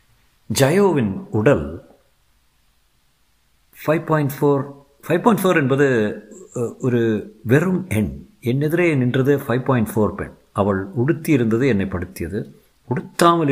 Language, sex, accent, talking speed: Tamil, male, native, 100 wpm